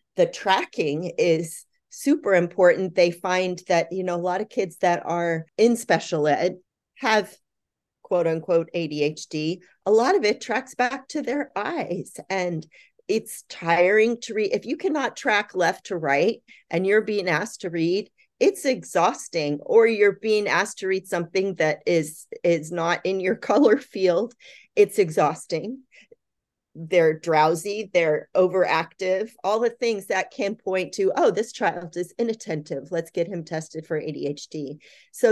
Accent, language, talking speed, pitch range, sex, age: American, English, 155 wpm, 170-225 Hz, female, 30-49